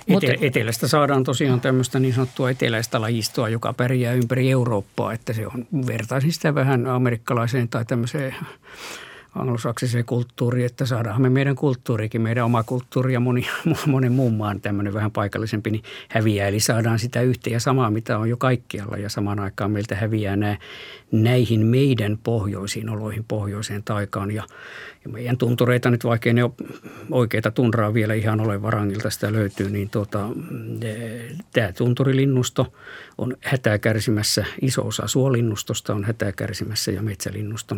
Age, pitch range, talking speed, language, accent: 50-69, 105-125 Hz, 150 wpm, Finnish, native